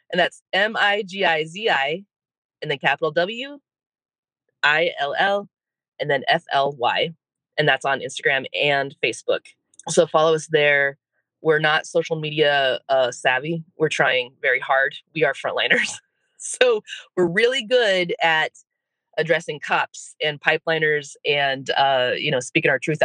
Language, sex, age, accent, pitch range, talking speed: English, female, 20-39, American, 150-210 Hz, 130 wpm